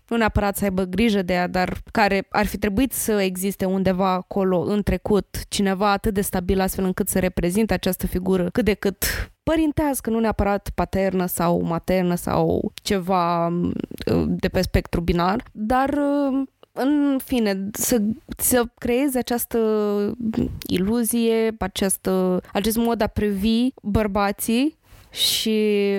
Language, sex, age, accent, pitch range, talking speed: Romanian, female, 20-39, native, 185-215 Hz, 130 wpm